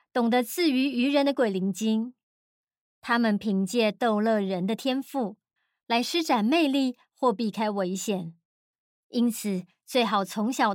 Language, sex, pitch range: Chinese, male, 205-270 Hz